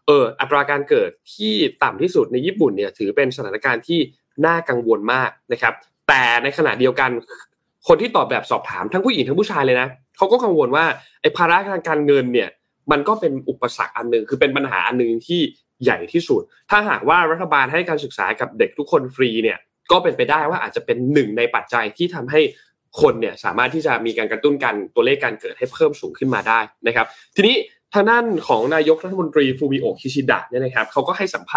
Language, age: Thai, 20-39